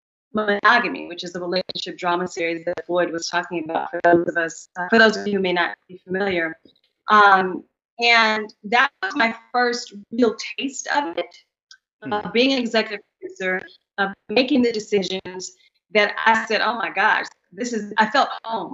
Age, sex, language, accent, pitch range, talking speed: 30-49, female, English, American, 185-230 Hz, 185 wpm